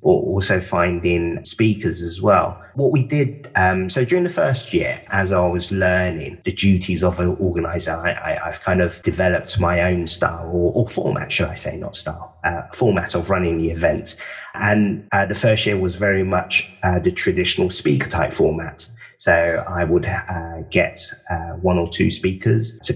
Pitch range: 85-115 Hz